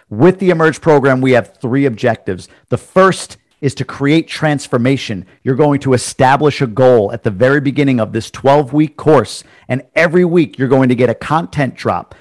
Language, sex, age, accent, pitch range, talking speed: English, male, 50-69, American, 120-155 Hz, 185 wpm